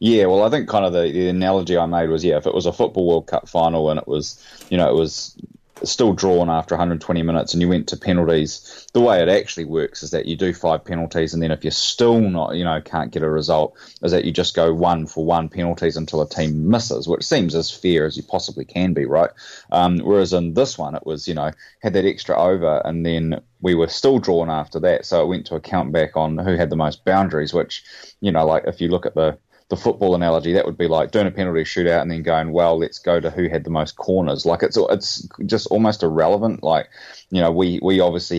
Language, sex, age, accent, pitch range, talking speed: English, male, 20-39, Australian, 80-90 Hz, 255 wpm